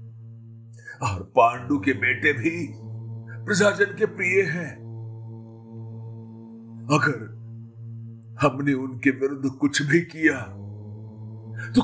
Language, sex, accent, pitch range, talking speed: Hindi, male, native, 115-150 Hz, 85 wpm